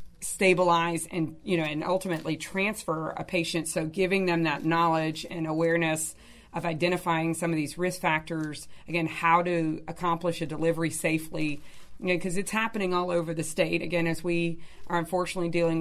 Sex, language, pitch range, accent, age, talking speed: female, English, 160-175 Hz, American, 30-49, 165 wpm